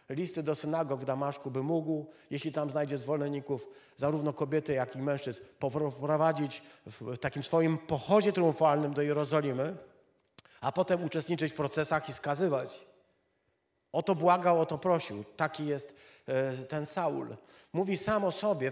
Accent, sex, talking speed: native, male, 145 wpm